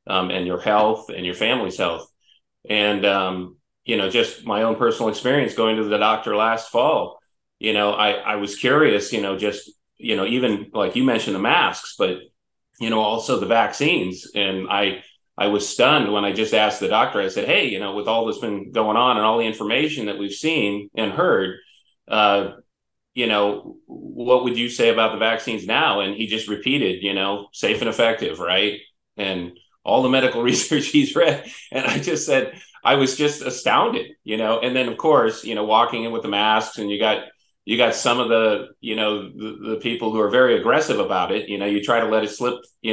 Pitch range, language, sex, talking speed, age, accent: 100-115 Hz, English, male, 215 wpm, 30-49, American